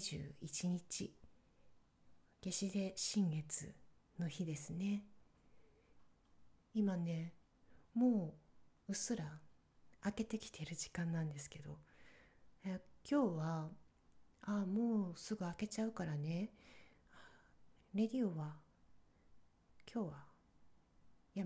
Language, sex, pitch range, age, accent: Japanese, female, 155-200 Hz, 40-59, native